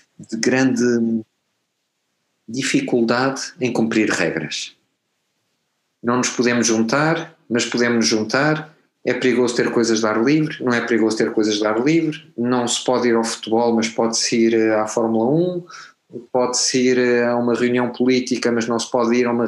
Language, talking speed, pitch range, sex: Portuguese, 165 wpm, 110-125 Hz, male